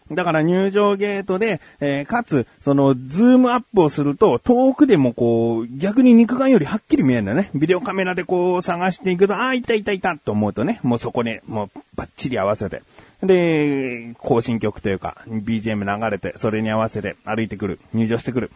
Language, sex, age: Japanese, male, 30-49